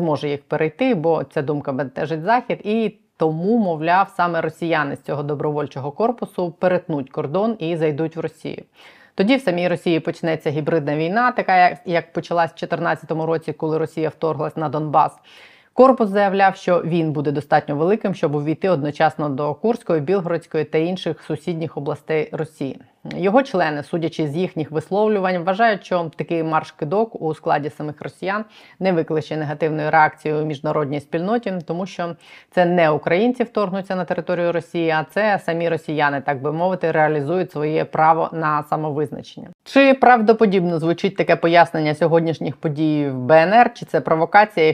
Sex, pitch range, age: female, 150-180 Hz, 20-39